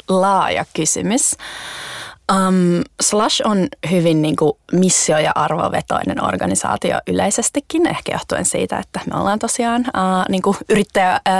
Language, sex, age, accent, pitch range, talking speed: Finnish, female, 20-39, native, 170-210 Hz, 130 wpm